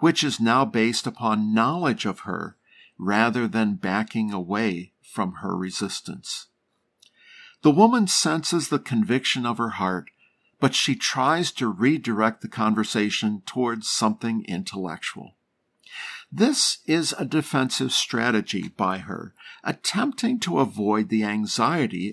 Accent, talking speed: American, 120 wpm